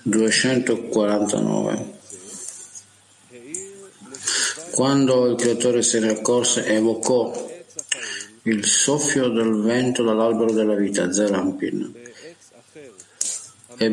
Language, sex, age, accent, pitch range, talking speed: Italian, male, 50-69, native, 110-130 Hz, 75 wpm